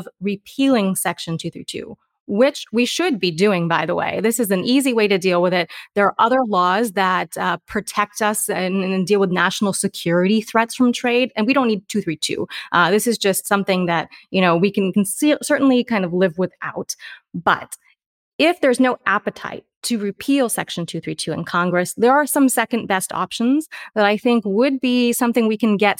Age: 30-49